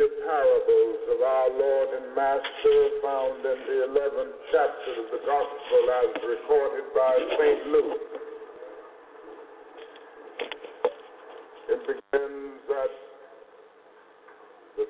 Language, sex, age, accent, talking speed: English, male, 50-69, American, 95 wpm